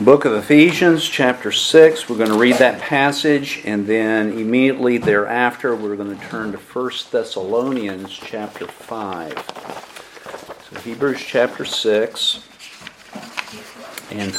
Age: 50-69